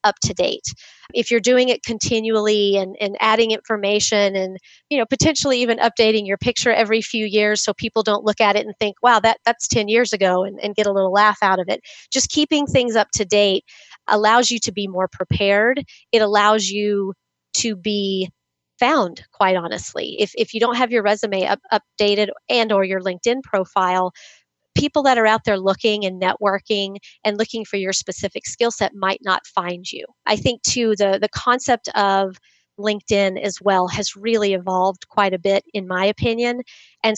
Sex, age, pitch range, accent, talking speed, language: female, 30-49, 195-230 Hz, American, 190 wpm, English